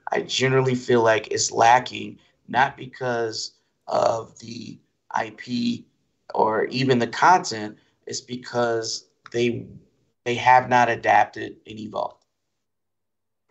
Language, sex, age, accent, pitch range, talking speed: English, male, 30-49, American, 120-145 Hz, 105 wpm